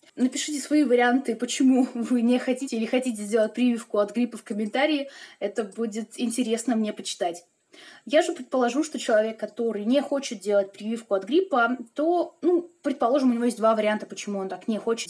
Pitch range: 215-270 Hz